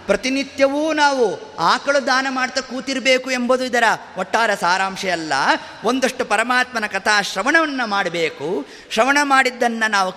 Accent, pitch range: native, 220-285 Hz